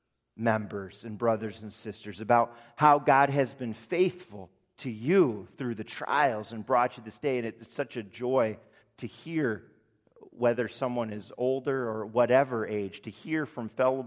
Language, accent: English, American